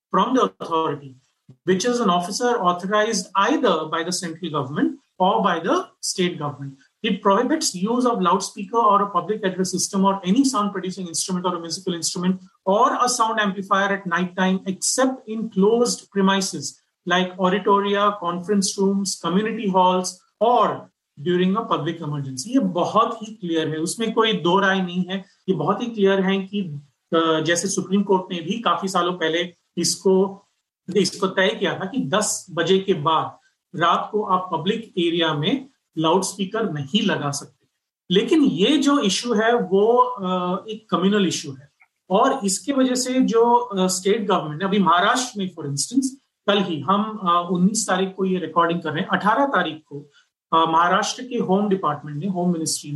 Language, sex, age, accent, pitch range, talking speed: Hindi, male, 30-49, native, 170-210 Hz, 175 wpm